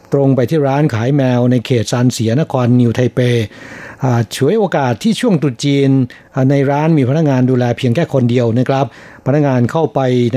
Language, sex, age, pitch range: Thai, male, 60-79, 125-150 Hz